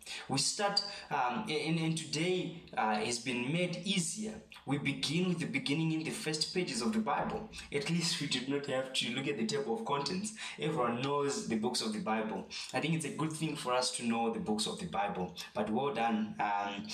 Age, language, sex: 20-39, English, male